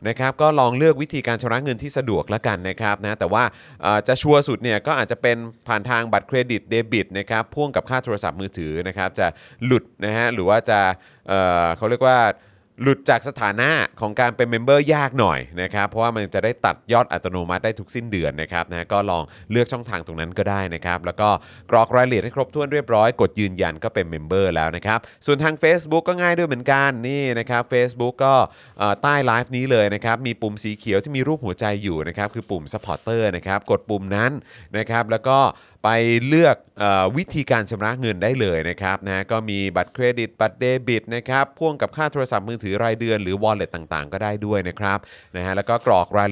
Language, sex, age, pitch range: Thai, male, 20-39, 95-130 Hz